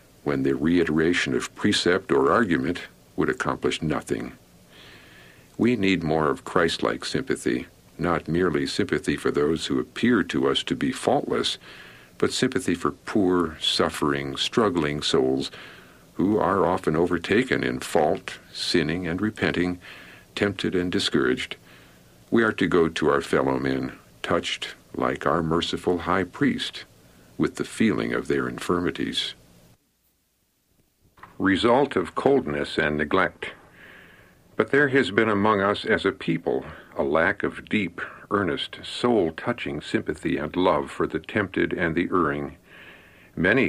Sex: male